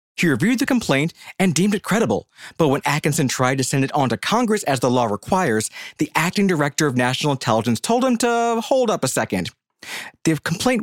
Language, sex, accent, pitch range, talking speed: English, male, American, 120-195 Hz, 205 wpm